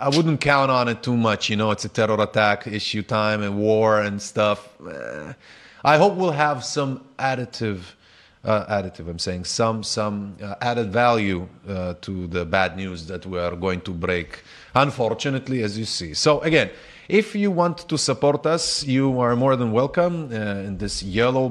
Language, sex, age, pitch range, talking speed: Hebrew, male, 30-49, 105-140 Hz, 185 wpm